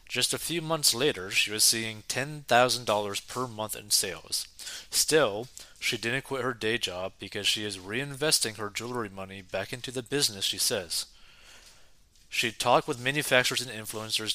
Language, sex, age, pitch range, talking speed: English, male, 30-49, 105-130 Hz, 165 wpm